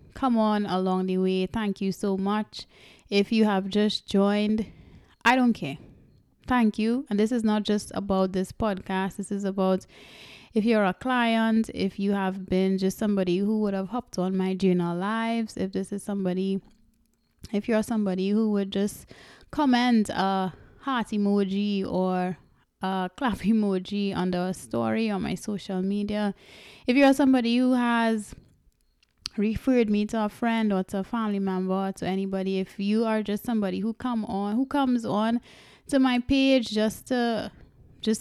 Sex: female